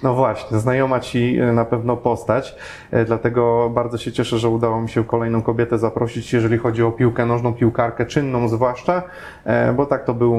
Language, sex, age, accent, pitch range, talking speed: Polish, male, 30-49, native, 115-135 Hz, 175 wpm